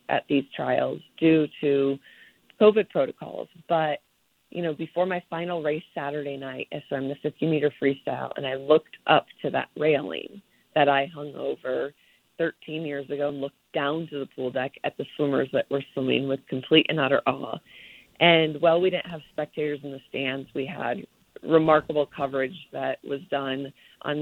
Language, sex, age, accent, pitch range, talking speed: English, female, 30-49, American, 140-165 Hz, 175 wpm